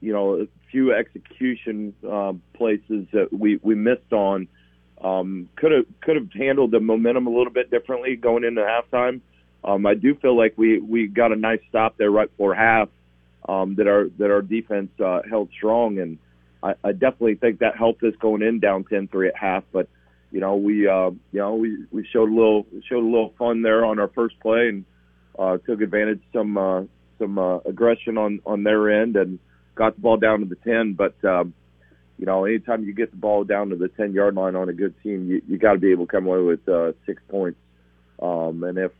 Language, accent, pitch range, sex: English, American, 90-110 Hz, male